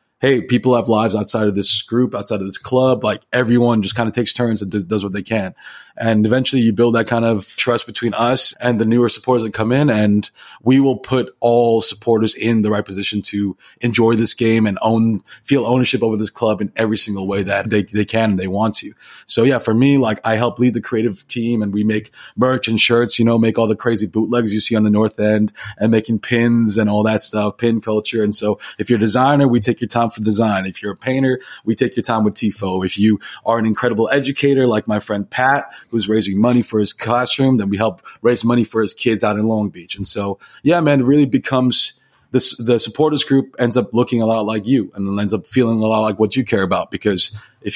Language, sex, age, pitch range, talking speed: English, male, 30-49, 105-120 Hz, 245 wpm